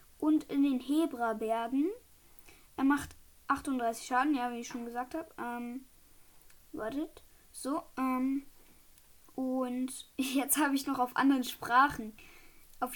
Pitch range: 245-300 Hz